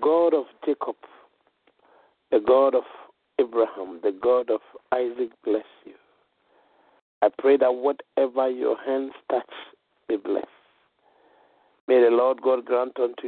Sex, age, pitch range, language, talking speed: male, 50-69, 130-180 Hz, English, 125 wpm